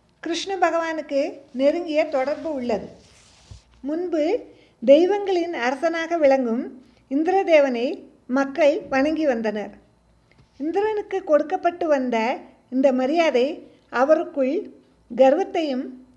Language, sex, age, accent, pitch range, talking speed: Tamil, female, 50-69, native, 265-335 Hz, 75 wpm